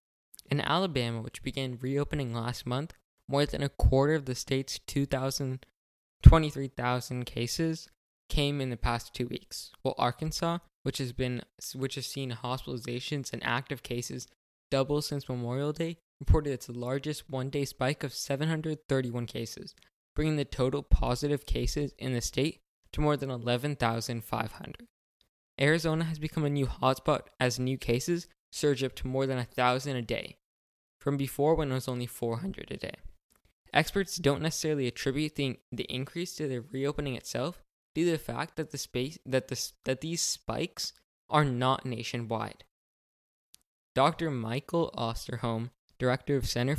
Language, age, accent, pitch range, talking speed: English, 10-29, American, 125-145 Hz, 150 wpm